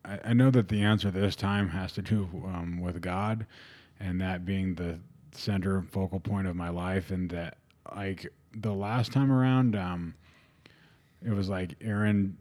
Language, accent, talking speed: English, American, 170 wpm